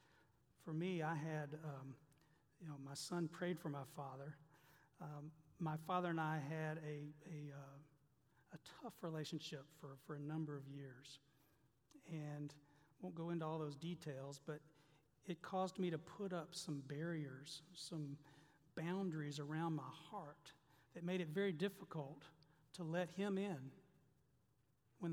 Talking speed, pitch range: 150 wpm, 150-170 Hz